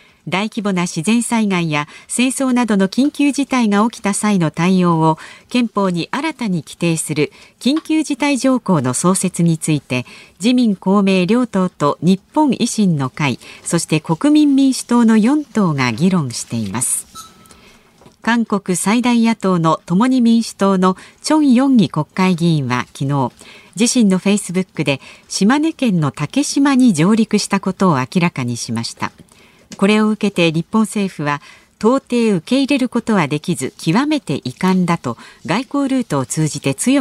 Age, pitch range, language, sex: 40-59, 160-240 Hz, Japanese, female